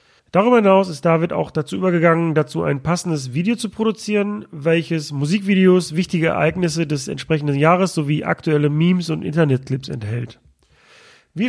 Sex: male